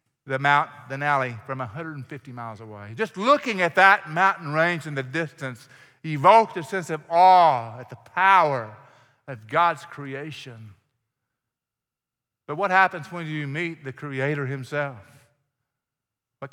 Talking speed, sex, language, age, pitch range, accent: 135 wpm, male, English, 50-69, 125-175 Hz, American